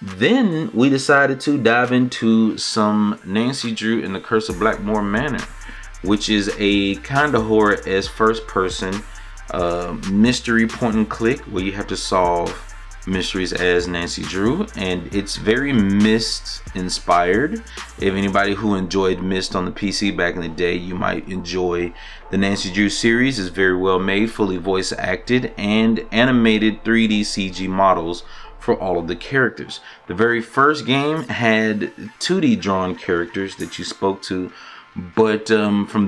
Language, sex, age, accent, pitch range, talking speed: English, male, 30-49, American, 95-115 Hz, 155 wpm